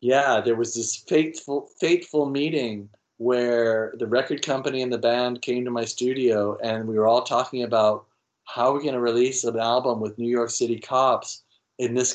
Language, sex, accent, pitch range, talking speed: English, male, American, 115-130 Hz, 195 wpm